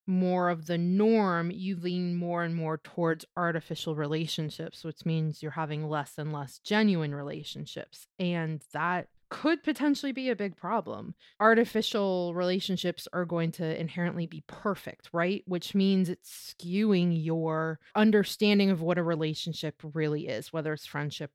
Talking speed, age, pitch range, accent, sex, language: 150 wpm, 30-49, 160-190 Hz, American, female, English